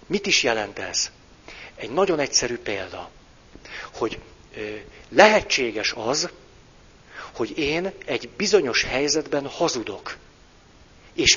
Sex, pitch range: male, 115-165 Hz